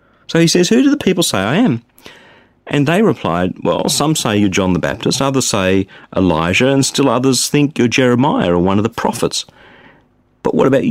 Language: English